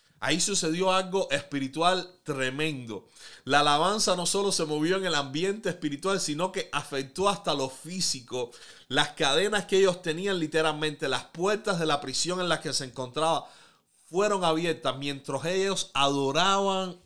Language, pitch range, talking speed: Spanish, 150-185 Hz, 150 wpm